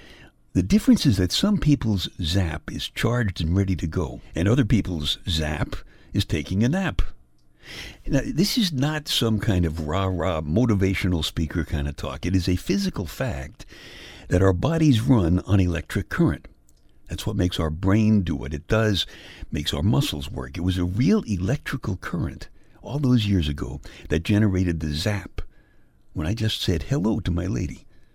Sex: male